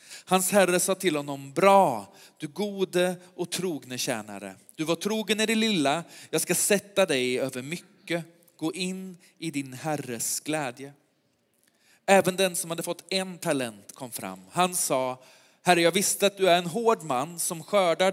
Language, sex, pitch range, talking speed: Swedish, male, 140-185 Hz, 170 wpm